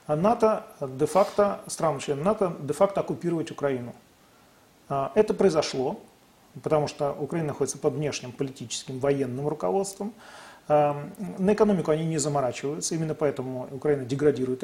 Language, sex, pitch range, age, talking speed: Russian, male, 140-195 Hz, 40-59, 105 wpm